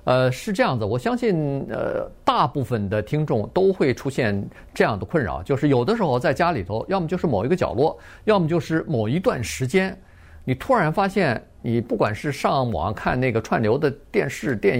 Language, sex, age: Chinese, male, 50-69